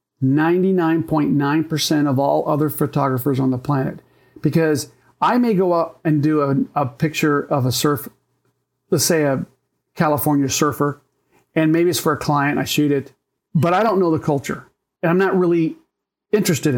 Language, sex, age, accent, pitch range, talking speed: English, male, 40-59, American, 140-170 Hz, 165 wpm